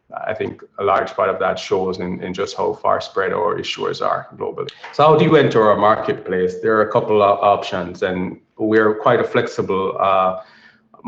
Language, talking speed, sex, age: English, 200 wpm, male, 20-39